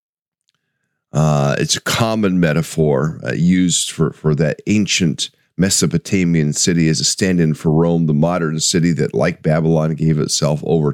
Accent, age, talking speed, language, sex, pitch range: American, 40-59, 150 wpm, English, male, 80-95 Hz